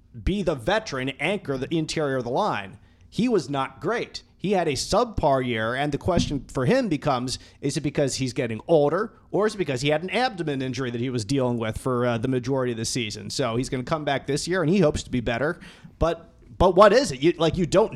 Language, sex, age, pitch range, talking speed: English, male, 30-49, 125-160 Hz, 245 wpm